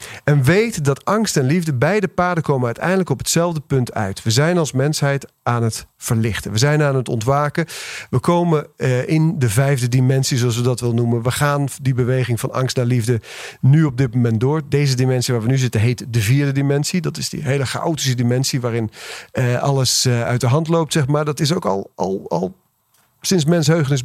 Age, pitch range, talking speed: 40-59, 130-160 Hz, 205 wpm